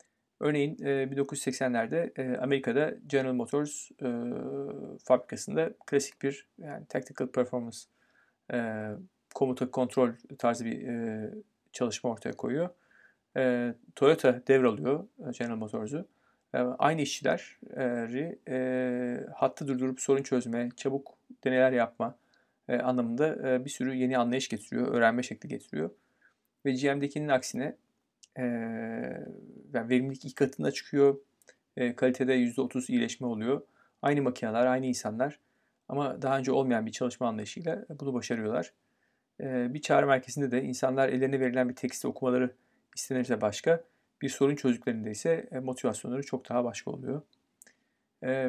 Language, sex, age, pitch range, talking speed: Turkish, male, 40-59, 125-140 Hz, 110 wpm